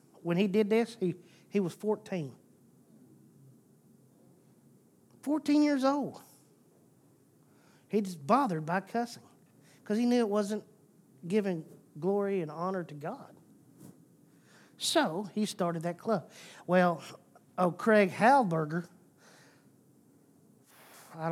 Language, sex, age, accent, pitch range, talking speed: English, male, 40-59, American, 155-205 Hz, 105 wpm